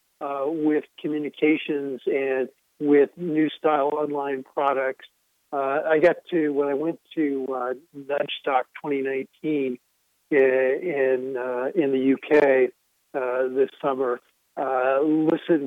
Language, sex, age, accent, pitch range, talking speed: English, male, 40-59, American, 145-175 Hz, 115 wpm